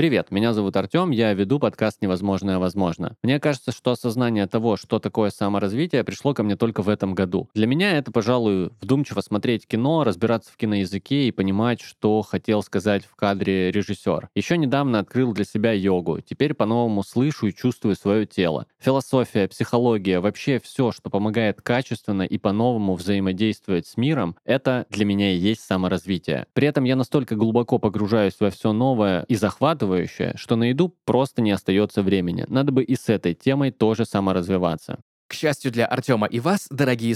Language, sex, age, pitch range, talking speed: Russian, male, 20-39, 105-140 Hz, 175 wpm